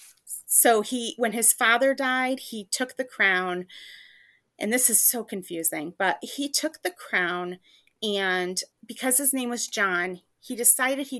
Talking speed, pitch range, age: 155 wpm, 185-235 Hz, 30-49